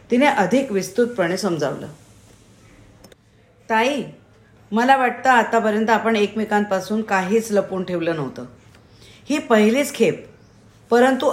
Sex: female